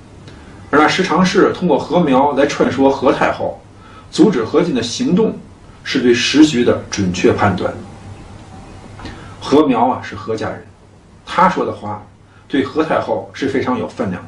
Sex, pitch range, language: male, 100-155 Hz, Chinese